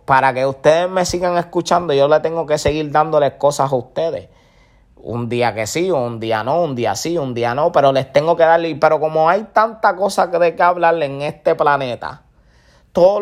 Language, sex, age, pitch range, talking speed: English, male, 20-39, 130-160 Hz, 210 wpm